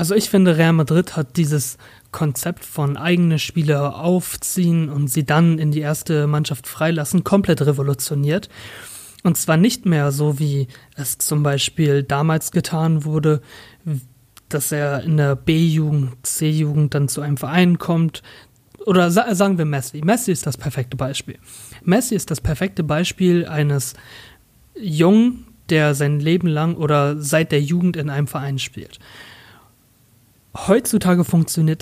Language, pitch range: German, 140-170 Hz